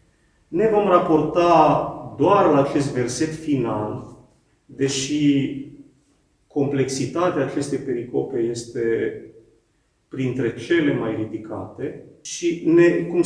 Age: 30-49